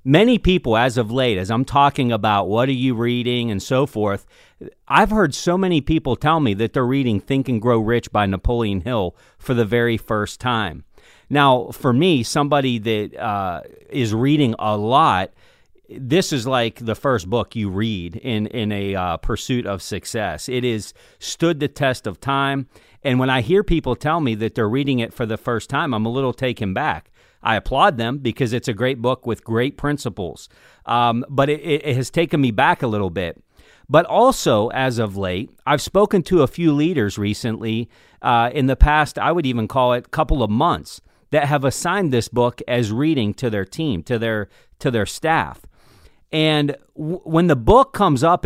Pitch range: 110-145 Hz